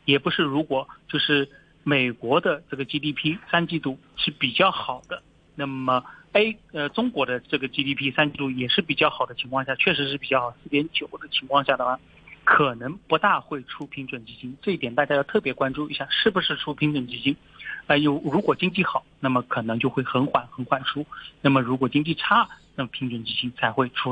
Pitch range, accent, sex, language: 130-150 Hz, native, male, Chinese